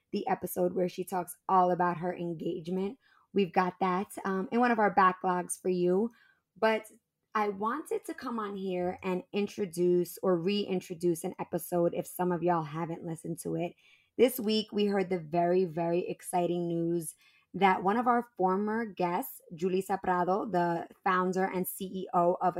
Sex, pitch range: female, 180-210 Hz